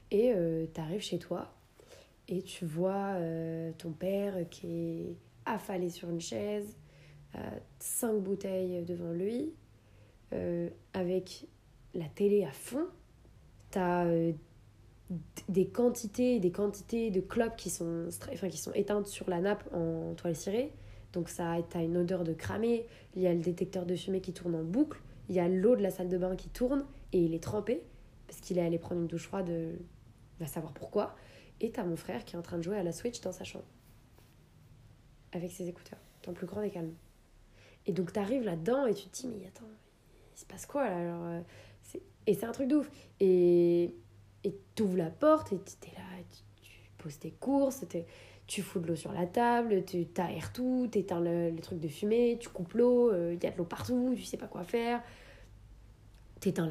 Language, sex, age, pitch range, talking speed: French, female, 20-39, 165-205 Hz, 195 wpm